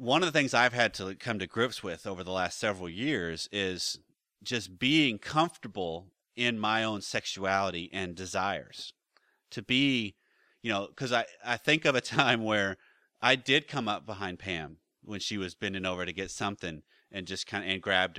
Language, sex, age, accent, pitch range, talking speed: English, male, 30-49, American, 95-130 Hz, 190 wpm